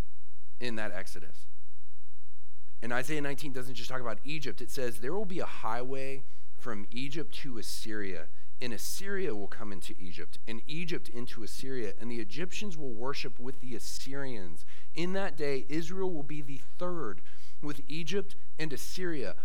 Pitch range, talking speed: 95-140 Hz, 160 wpm